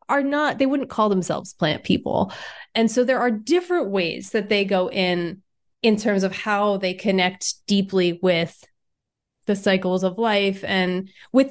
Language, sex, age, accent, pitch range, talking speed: English, female, 30-49, American, 185-250 Hz, 165 wpm